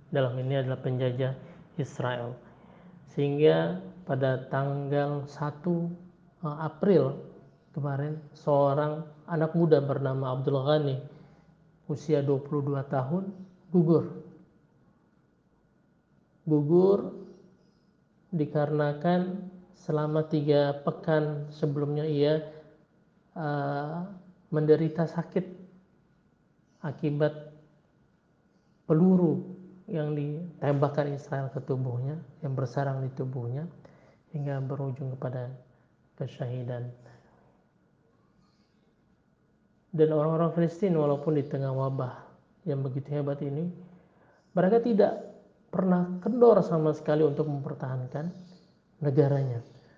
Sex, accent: male, native